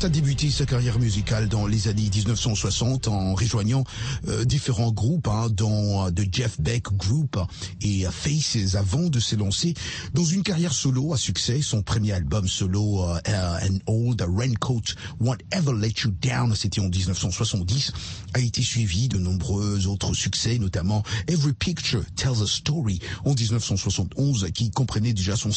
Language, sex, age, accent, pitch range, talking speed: French, male, 50-69, French, 100-135 Hz, 160 wpm